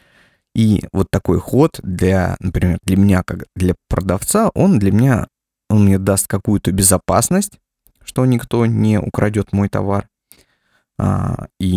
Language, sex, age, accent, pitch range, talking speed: Russian, male, 20-39, native, 95-115 Hz, 140 wpm